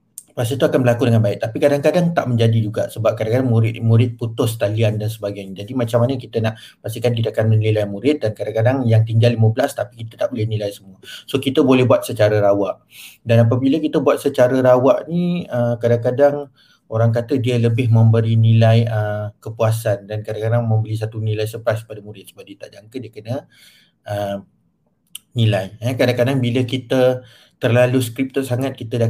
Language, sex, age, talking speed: Malay, male, 30-49, 175 wpm